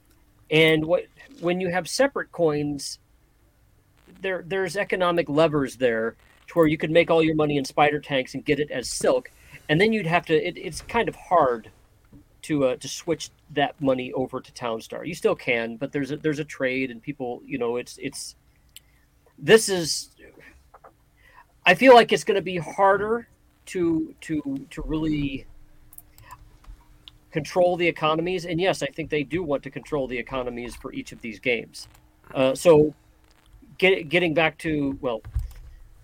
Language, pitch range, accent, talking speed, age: English, 125-170 Hz, American, 165 wpm, 40-59